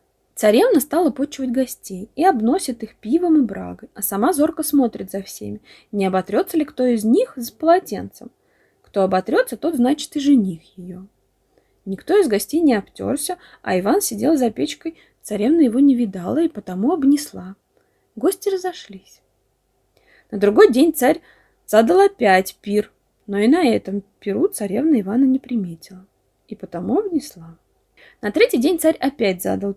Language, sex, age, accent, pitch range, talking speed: Russian, female, 20-39, native, 200-315 Hz, 150 wpm